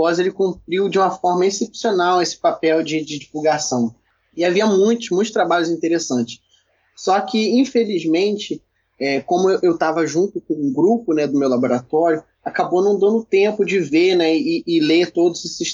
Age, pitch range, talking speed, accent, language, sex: 20-39, 160-235 Hz, 170 wpm, Brazilian, Portuguese, male